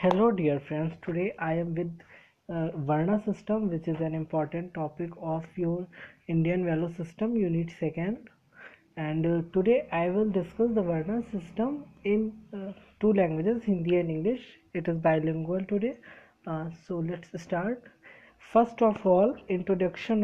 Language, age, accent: Hindi, 20-39, native